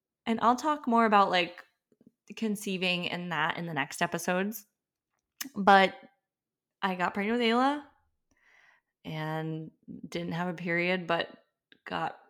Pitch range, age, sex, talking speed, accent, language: 180-265 Hz, 20-39, female, 120 wpm, American, English